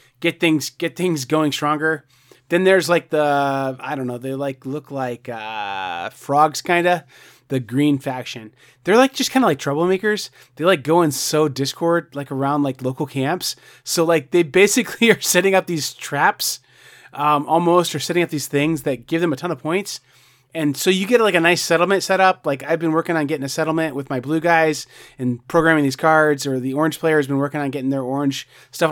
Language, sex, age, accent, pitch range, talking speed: English, male, 30-49, American, 135-165 Hz, 215 wpm